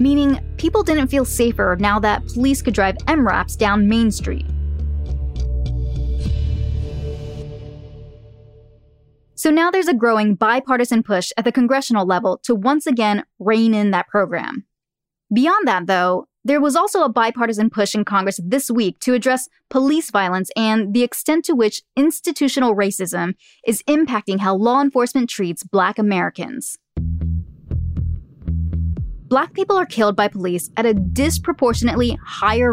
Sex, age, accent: female, 10-29, American